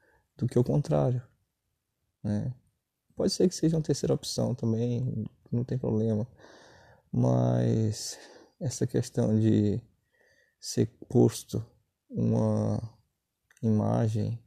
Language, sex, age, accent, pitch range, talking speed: Portuguese, male, 20-39, Brazilian, 110-140 Hz, 100 wpm